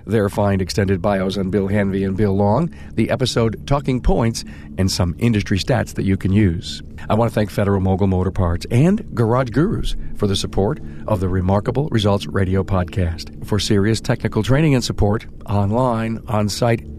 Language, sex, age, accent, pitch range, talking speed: English, male, 50-69, American, 95-115 Hz, 175 wpm